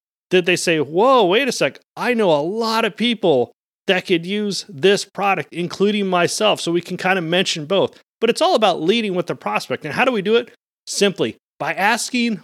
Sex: male